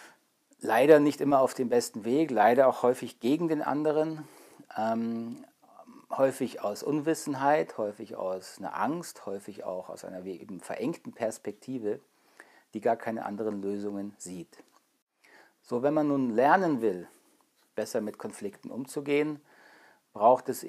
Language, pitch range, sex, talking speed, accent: German, 110-135 Hz, male, 130 wpm, German